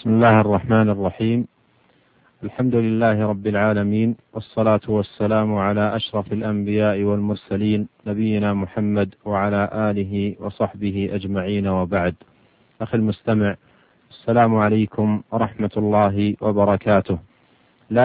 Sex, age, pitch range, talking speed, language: male, 40-59, 105-115 Hz, 95 wpm, Arabic